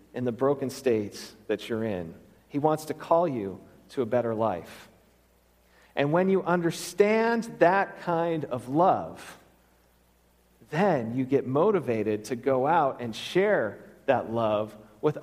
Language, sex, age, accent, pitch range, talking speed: English, male, 40-59, American, 95-160 Hz, 140 wpm